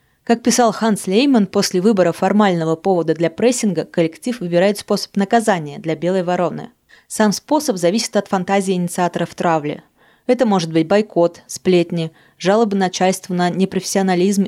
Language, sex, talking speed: Russian, female, 140 wpm